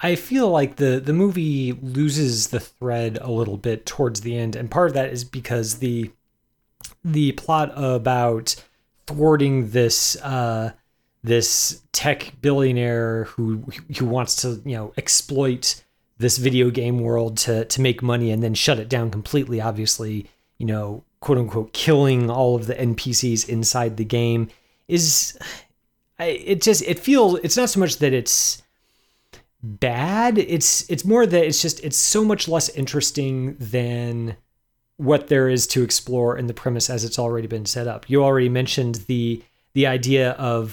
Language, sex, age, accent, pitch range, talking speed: English, male, 30-49, American, 115-145 Hz, 165 wpm